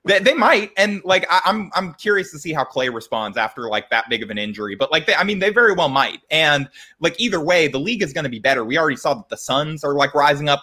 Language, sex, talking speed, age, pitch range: English, male, 290 wpm, 20-39, 125-155 Hz